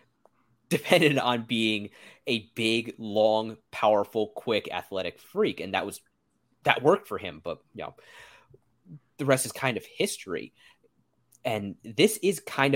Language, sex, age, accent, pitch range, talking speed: English, male, 30-49, American, 105-135 Hz, 140 wpm